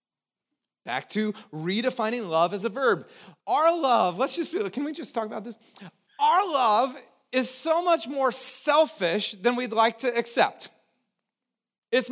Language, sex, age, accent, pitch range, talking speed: English, male, 30-49, American, 210-280 Hz, 160 wpm